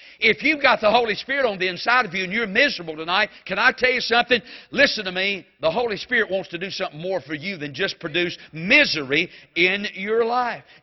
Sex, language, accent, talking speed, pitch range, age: male, English, American, 220 wpm, 170-230 Hz, 50-69